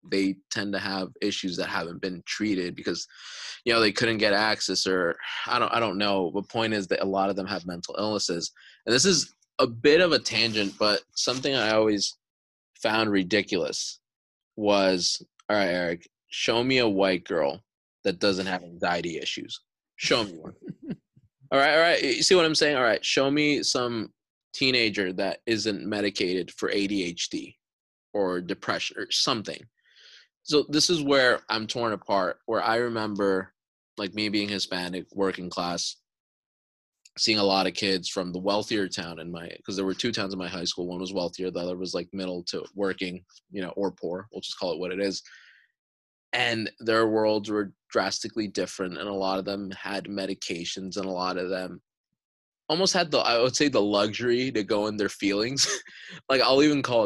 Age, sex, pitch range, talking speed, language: 20-39, male, 95-110 Hz, 190 wpm, English